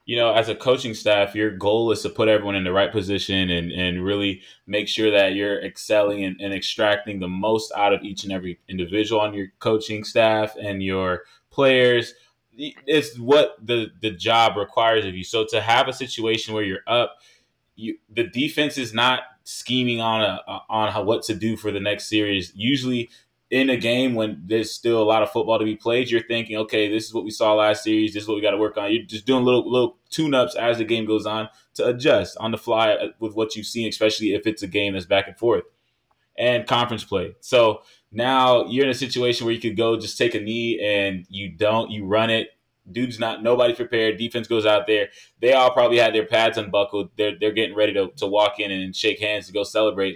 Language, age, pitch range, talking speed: English, 20-39, 105-120 Hz, 225 wpm